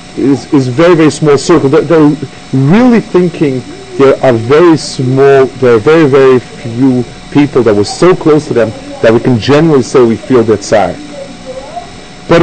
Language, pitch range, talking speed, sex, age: English, 130-175 Hz, 175 wpm, male, 40-59